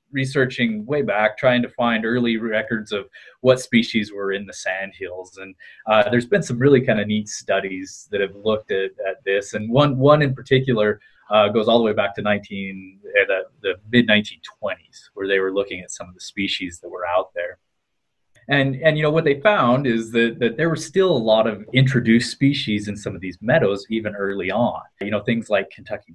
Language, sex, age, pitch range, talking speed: English, male, 20-39, 105-135 Hz, 215 wpm